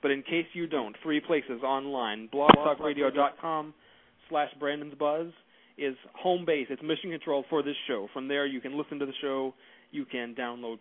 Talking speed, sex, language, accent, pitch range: 160 wpm, male, English, American, 120-145 Hz